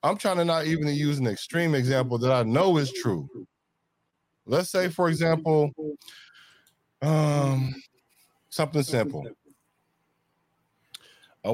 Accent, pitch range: American, 125-150 Hz